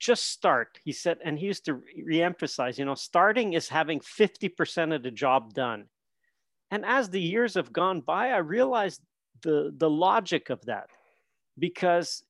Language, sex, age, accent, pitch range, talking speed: English, male, 50-69, American, 155-220 Hz, 165 wpm